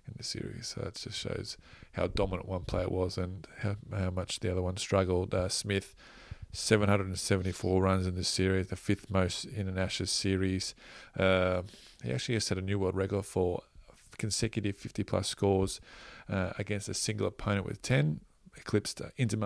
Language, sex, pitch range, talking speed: English, male, 95-110 Hz, 180 wpm